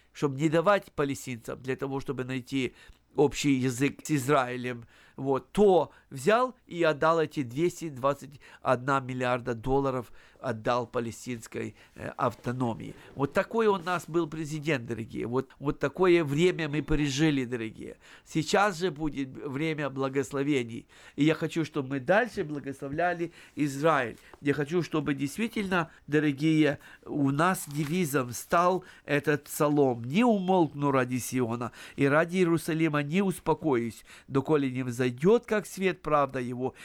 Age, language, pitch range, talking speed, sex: 50-69, Russian, 125-160 Hz, 130 wpm, male